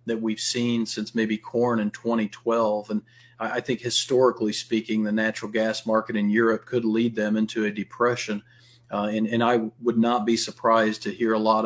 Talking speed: 190 wpm